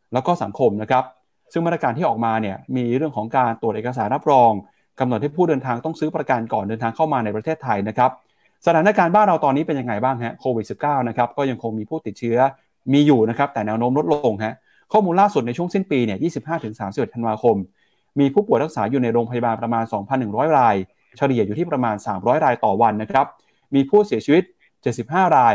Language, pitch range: Thai, 110-145 Hz